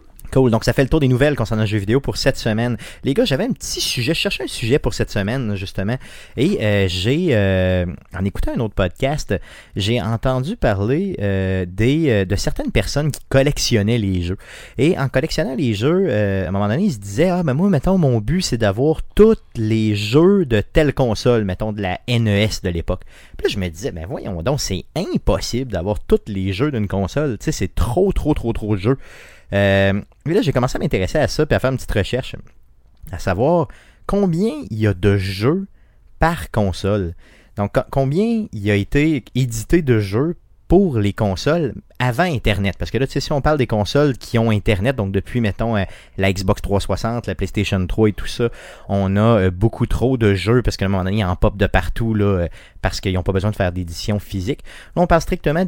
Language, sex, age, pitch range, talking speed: French, male, 30-49, 100-130 Hz, 225 wpm